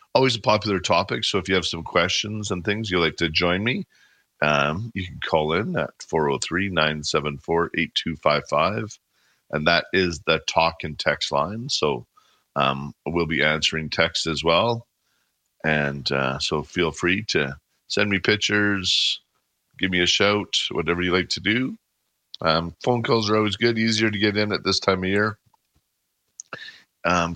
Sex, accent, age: male, American, 40-59